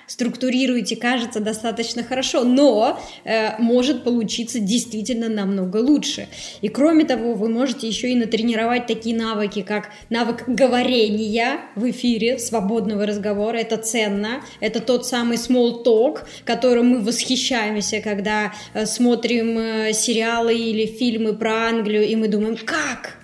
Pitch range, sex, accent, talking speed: 220-265 Hz, female, native, 130 wpm